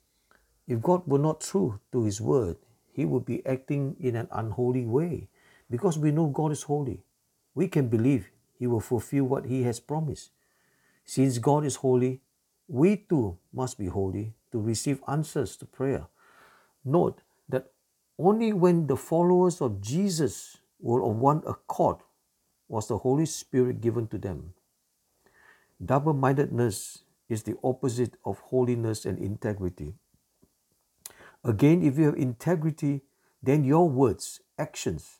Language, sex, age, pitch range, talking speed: English, male, 50-69, 110-140 Hz, 140 wpm